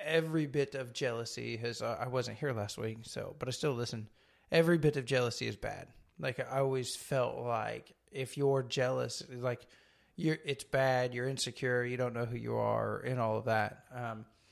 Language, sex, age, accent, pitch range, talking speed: English, male, 20-39, American, 120-140 Hz, 195 wpm